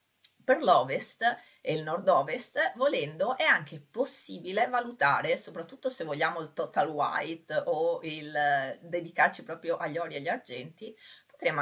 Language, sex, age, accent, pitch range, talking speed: Italian, female, 30-49, native, 160-265 Hz, 140 wpm